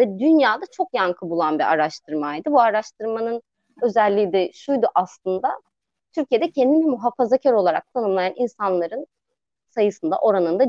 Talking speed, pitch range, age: 120 wpm, 190-265 Hz, 30-49